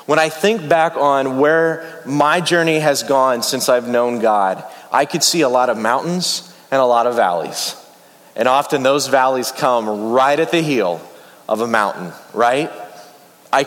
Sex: male